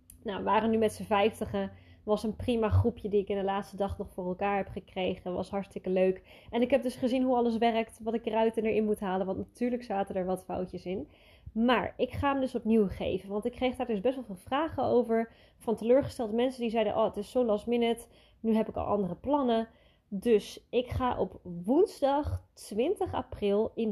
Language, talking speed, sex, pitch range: Dutch, 225 wpm, female, 200-245 Hz